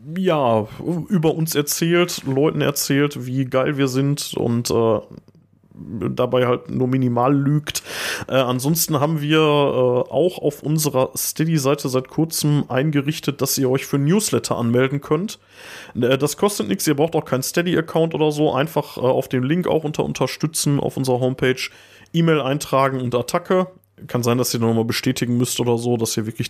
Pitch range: 120-150 Hz